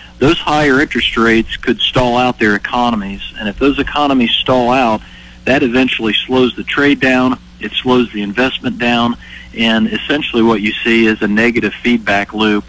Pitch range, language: 105-120 Hz, English